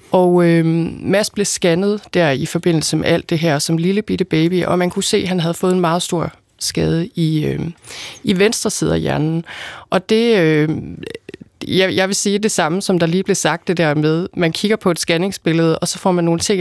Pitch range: 160-195 Hz